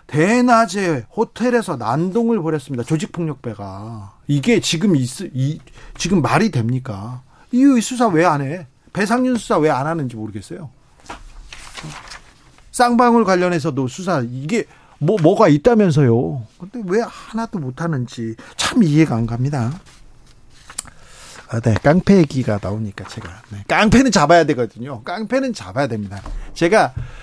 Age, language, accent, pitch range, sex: 40-59, Korean, native, 130-190 Hz, male